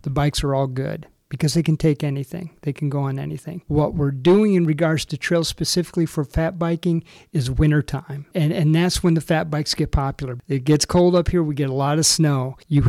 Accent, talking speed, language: American, 230 wpm, English